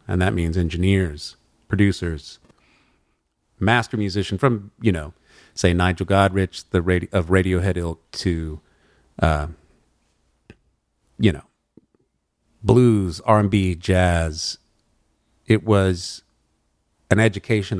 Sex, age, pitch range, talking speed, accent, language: male, 40-59, 90-105 Hz, 100 wpm, American, English